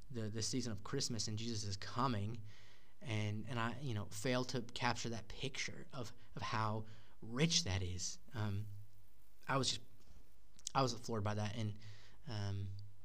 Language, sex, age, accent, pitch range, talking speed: English, male, 20-39, American, 105-125 Hz, 165 wpm